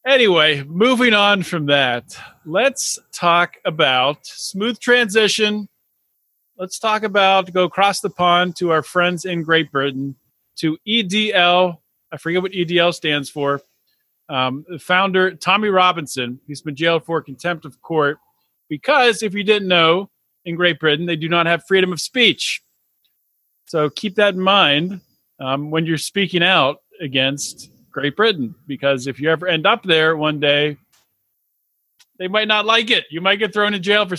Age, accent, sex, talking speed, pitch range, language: 40-59, American, male, 160 wpm, 140-195 Hz, English